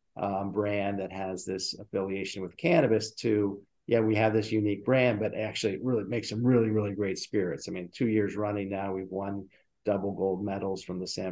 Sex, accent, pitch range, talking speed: male, American, 105-140 Hz, 205 wpm